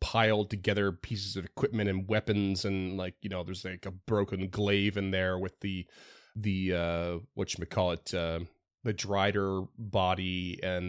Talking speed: 155 wpm